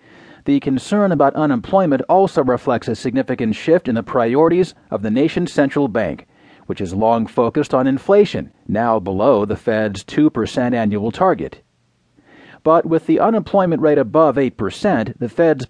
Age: 40-59